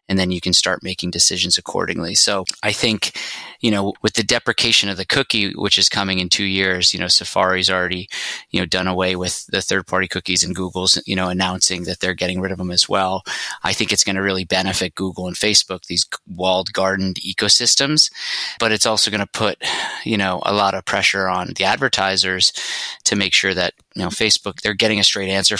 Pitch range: 90-100 Hz